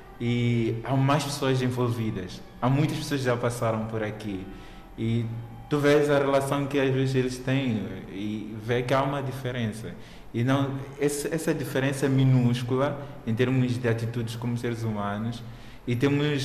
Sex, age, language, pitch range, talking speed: male, 20-39, Portuguese, 115-140 Hz, 160 wpm